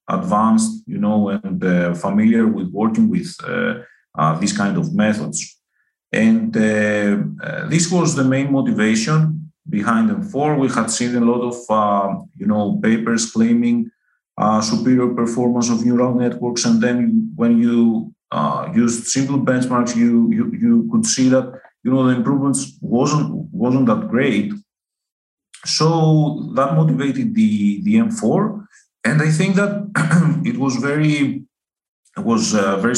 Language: English